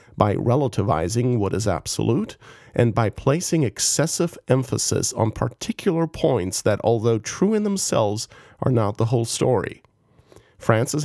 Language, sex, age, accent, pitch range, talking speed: English, male, 40-59, American, 110-145 Hz, 130 wpm